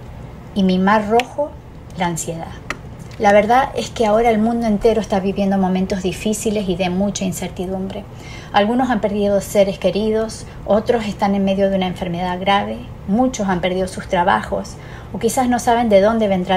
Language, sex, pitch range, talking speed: Spanish, female, 185-215 Hz, 170 wpm